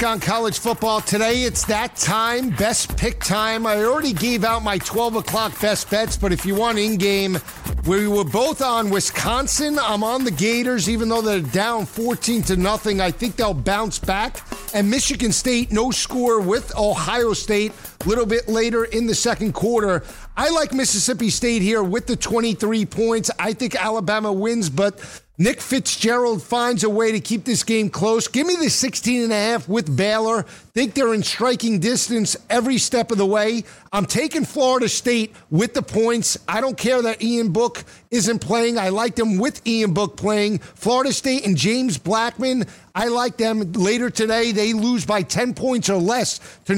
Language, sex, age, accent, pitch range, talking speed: English, male, 50-69, American, 205-235 Hz, 185 wpm